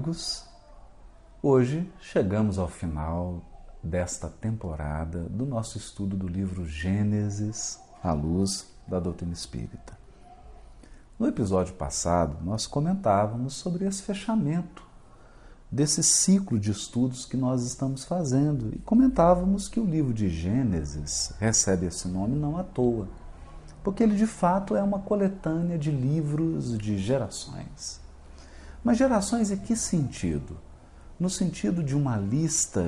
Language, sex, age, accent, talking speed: Portuguese, male, 40-59, Brazilian, 120 wpm